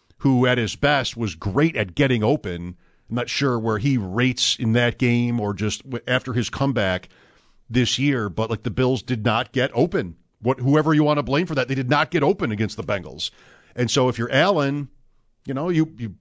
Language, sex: English, male